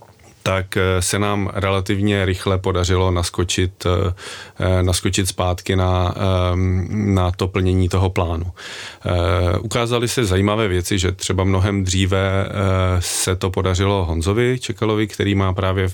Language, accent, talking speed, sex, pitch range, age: Czech, native, 115 wpm, male, 95-100 Hz, 30-49